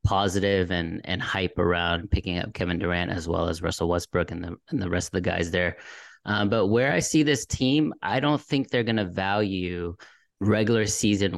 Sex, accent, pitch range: male, American, 95-110 Hz